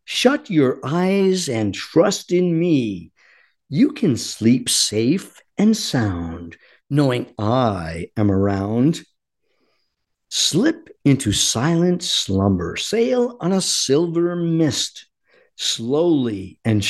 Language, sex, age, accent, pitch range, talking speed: English, male, 50-69, American, 105-165 Hz, 100 wpm